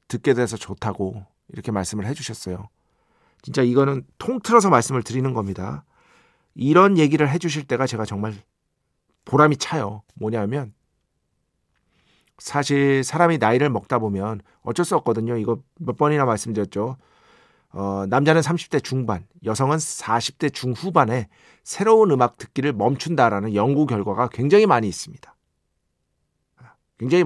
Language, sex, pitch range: Korean, male, 105-145 Hz